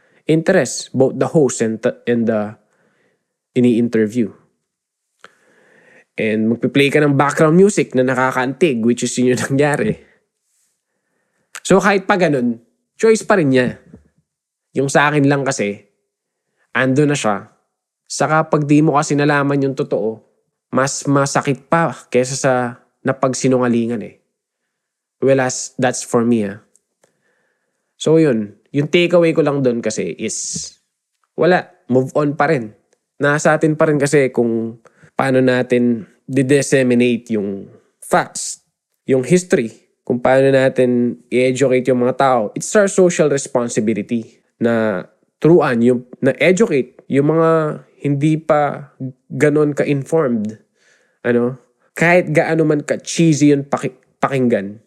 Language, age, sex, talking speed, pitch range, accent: Filipino, 20-39, male, 130 wpm, 120-150 Hz, native